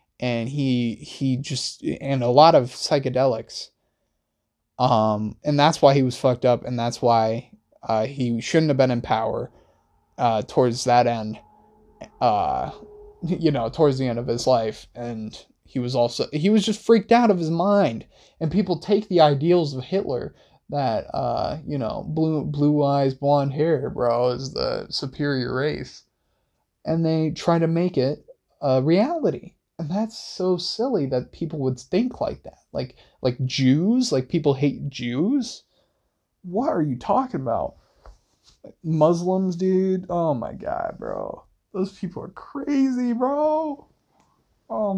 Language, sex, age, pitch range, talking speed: English, male, 20-39, 130-195 Hz, 155 wpm